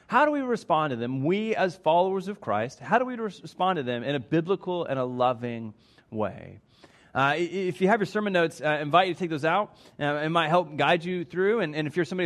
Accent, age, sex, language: American, 30-49, male, English